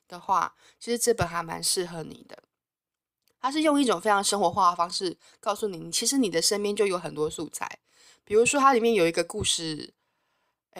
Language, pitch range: Chinese, 170-240 Hz